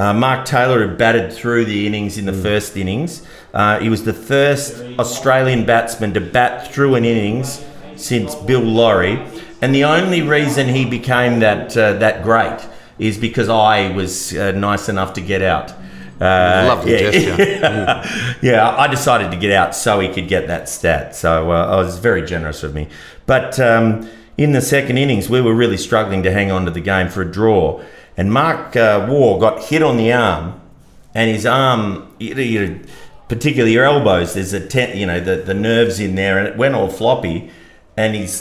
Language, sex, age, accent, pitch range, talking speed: English, male, 40-59, Australian, 95-120 Hz, 190 wpm